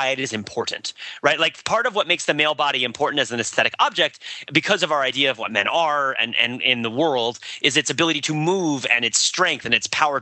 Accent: American